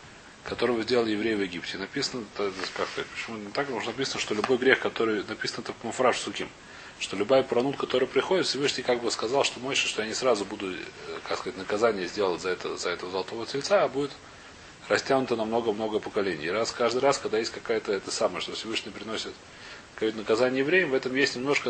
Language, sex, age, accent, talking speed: Russian, male, 30-49, native, 195 wpm